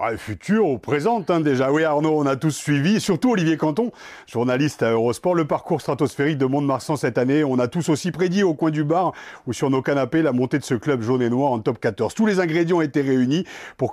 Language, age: French, 40-59